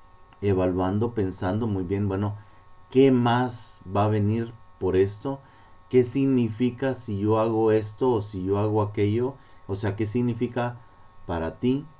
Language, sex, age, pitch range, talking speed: Spanish, male, 40-59, 90-125 Hz, 145 wpm